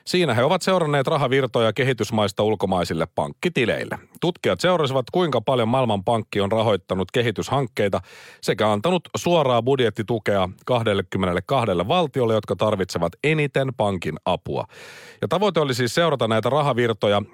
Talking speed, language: 120 wpm, Finnish